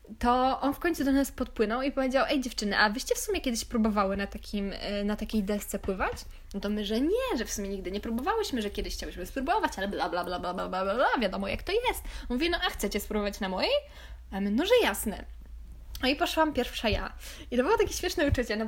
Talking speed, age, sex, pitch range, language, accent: 235 wpm, 10-29, female, 210-275 Hz, Polish, native